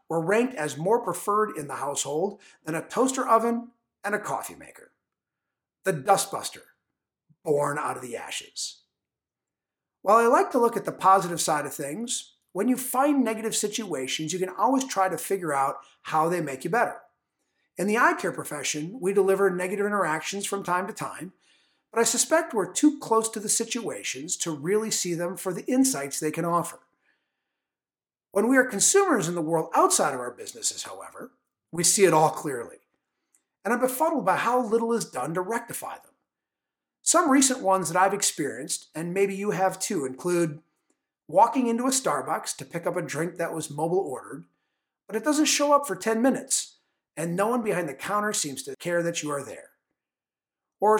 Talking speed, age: 185 wpm, 50-69